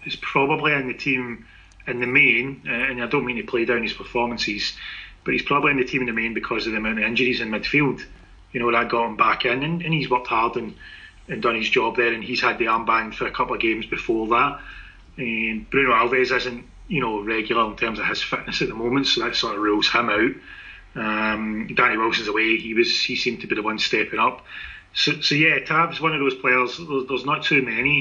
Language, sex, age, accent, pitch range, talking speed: English, male, 30-49, British, 115-140 Hz, 240 wpm